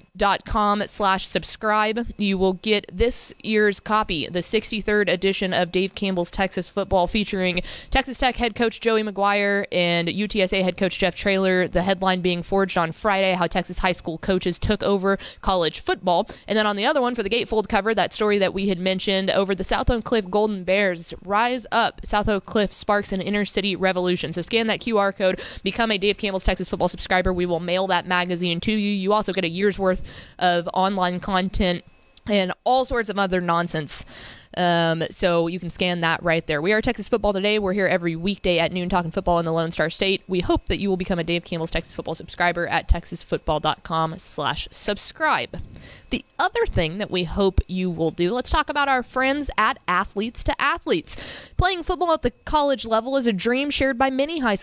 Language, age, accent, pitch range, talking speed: English, 20-39, American, 180-215 Hz, 205 wpm